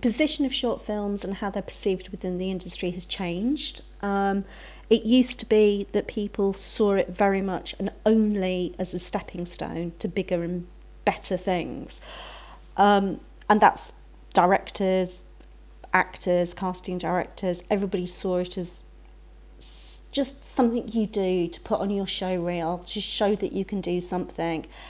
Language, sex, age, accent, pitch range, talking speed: English, female, 40-59, British, 185-210 Hz, 150 wpm